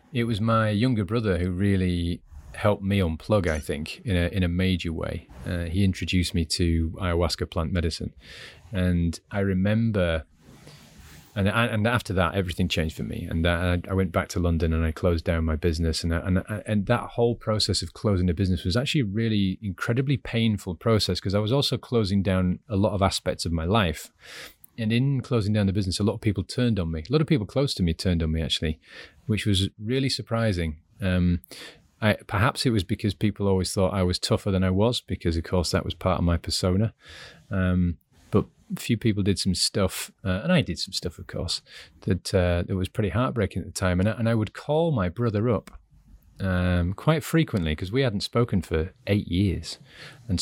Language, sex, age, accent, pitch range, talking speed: English, male, 30-49, British, 85-110 Hz, 210 wpm